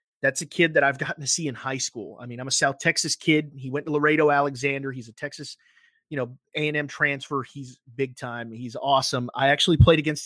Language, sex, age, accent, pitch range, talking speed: English, male, 30-49, American, 125-155 Hz, 215 wpm